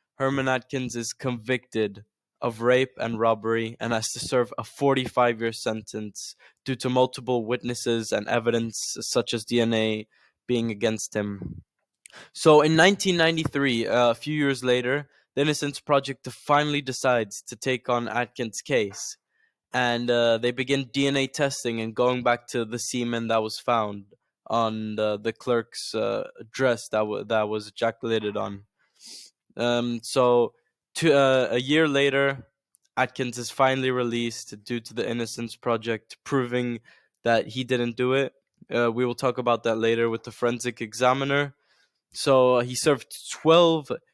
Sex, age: male, 10-29